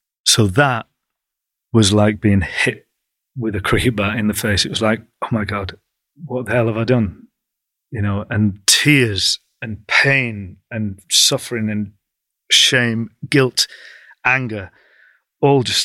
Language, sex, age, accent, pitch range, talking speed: English, male, 40-59, British, 105-125 Hz, 145 wpm